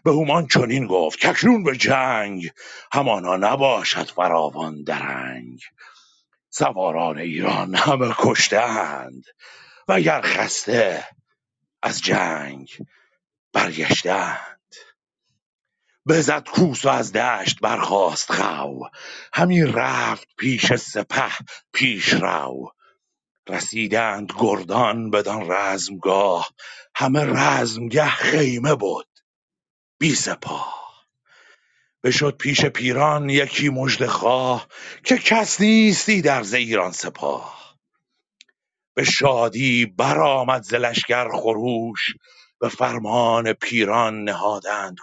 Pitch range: 95-140 Hz